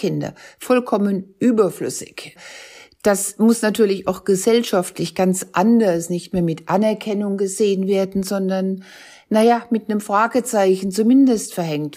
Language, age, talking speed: German, 60-79, 115 wpm